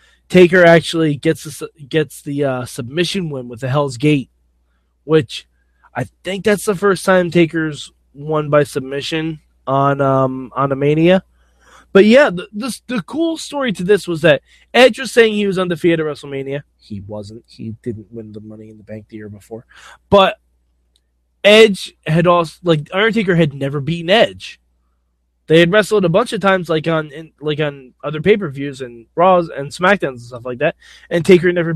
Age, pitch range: 20-39, 130-205 Hz